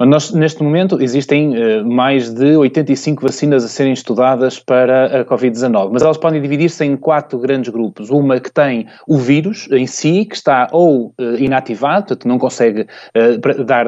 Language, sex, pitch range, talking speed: Portuguese, male, 125-155 Hz, 155 wpm